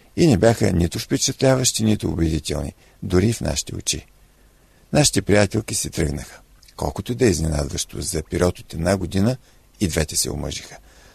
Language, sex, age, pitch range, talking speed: Bulgarian, male, 50-69, 85-120 Hz, 150 wpm